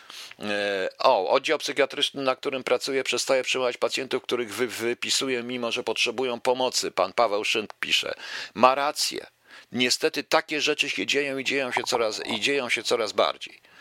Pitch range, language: 130-215 Hz, Polish